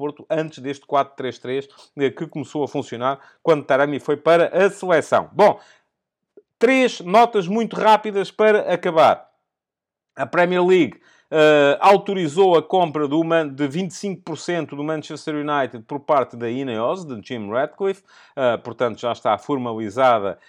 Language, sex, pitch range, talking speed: Portuguese, male, 125-180 Hz, 135 wpm